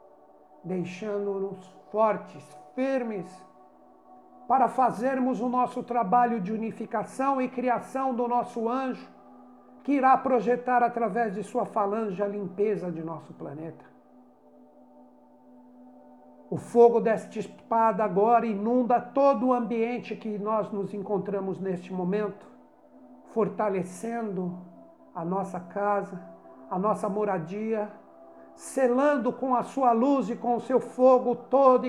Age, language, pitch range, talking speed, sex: 60-79, Portuguese, 165-235 Hz, 115 wpm, male